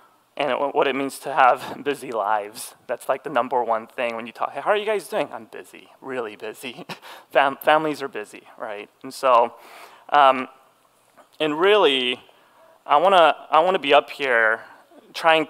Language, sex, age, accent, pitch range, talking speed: English, male, 30-49, American, 125-150 Hz, 180 wpm